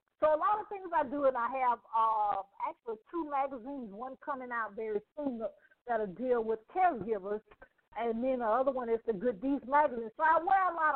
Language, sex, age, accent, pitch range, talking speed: English, female, 50-69, American, 235-310 Hz, 215 wpm